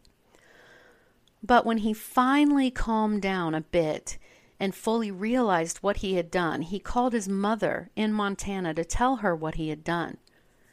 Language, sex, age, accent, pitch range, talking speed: English, female, 40-59, American, 165-205 Hz, 155 wpm